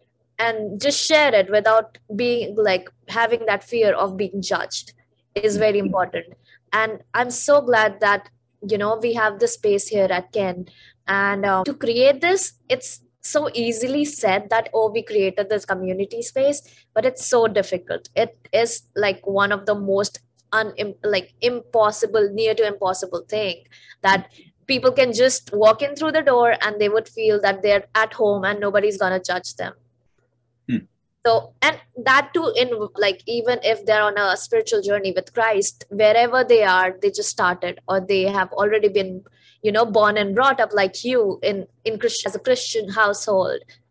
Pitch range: 195-240 Hz